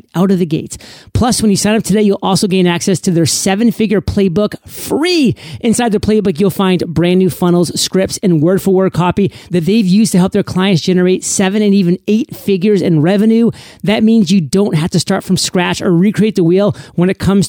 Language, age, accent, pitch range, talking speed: English, 30-49, American, 165-200 Hz, 215 wpm